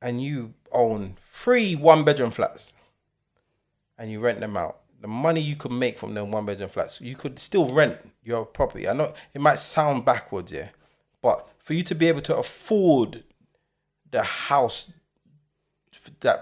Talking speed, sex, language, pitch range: 160 wpm, male, English, 110-150 Hz